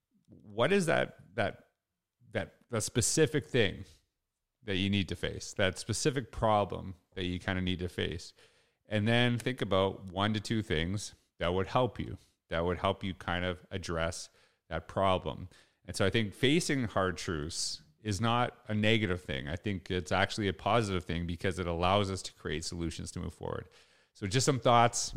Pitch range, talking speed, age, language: 90-110 Hz, 185 wpm, 30-49, English